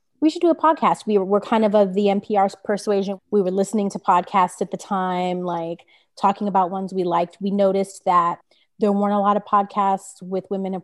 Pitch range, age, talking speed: 190-220 Hz, 30-49, 215 wpm